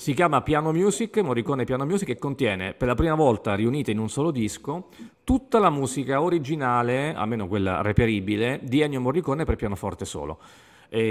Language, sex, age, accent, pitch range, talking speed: Italian, male, 40-59, native, 110-140 Hz, 175 wpm